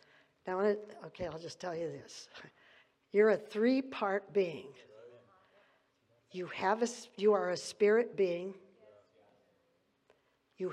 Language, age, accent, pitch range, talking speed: English, 50-69, American, 190-235 Hz, 110 wpm